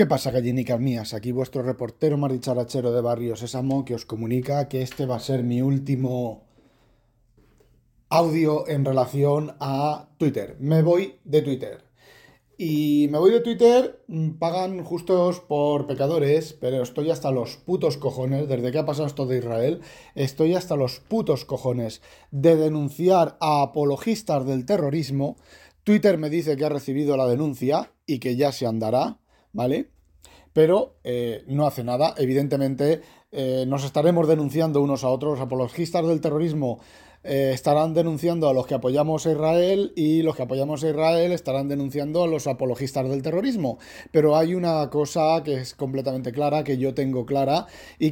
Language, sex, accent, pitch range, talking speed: Spanish, male, Spanish, 130-160 Hz, 160 wpm